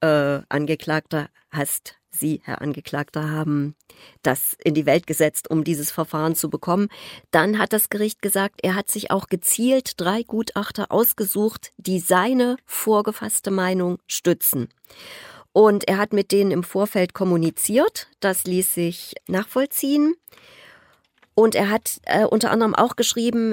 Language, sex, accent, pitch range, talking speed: German, female, German, 170-220 Hz, 140 wpm